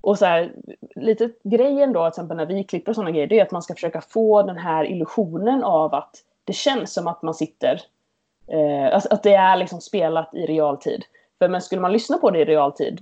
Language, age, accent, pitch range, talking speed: Swedish, 20-39, native, 165-225 Hz, 225 wpm